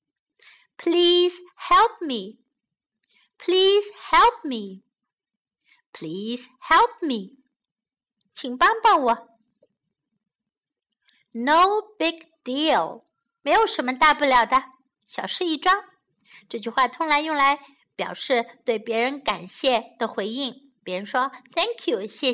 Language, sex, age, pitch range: Chinese, female, 60-79, 225-345 Hz